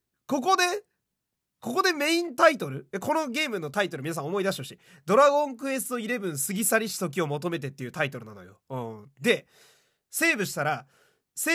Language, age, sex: Japanese, 30-49, male